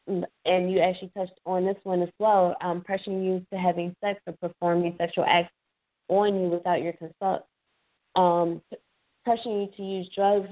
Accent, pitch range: American, 180-195 Hz